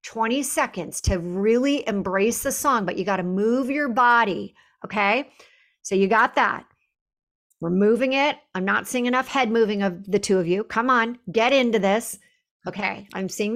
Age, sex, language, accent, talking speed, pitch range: 50-69, female, English, American, 180 wpm, 190-245 Hz